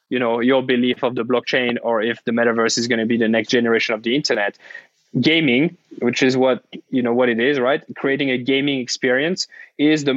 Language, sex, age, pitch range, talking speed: English, male, 20-39, 120-140 Hz, 220 wpm